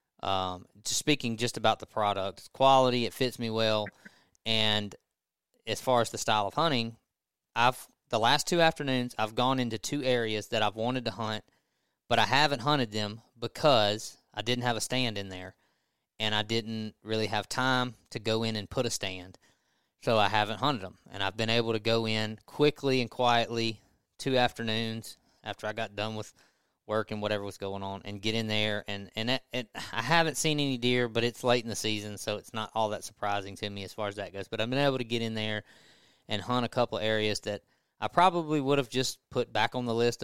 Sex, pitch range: male, 105-125 Hz